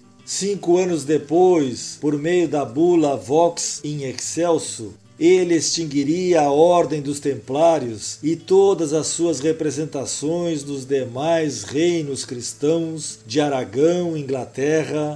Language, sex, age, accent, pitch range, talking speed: Portuguese, male, 50-69, Brazilian, 135-170 Hz, 110 wpm